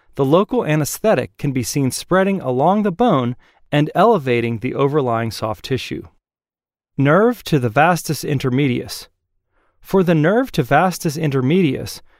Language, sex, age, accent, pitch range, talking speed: English, male, 40-59, American, 125-180 Hz, 135 wpm